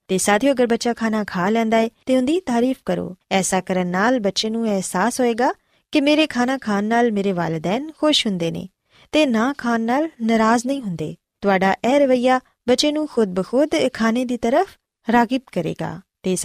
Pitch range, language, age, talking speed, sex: 195-275 Hz, Punjabi, 20-39, 130 wpm, female